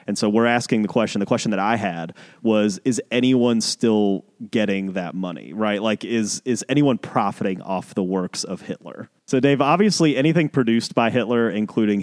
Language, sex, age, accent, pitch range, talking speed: English, male, 30-49, American, 105-145 Hz, 185 wpm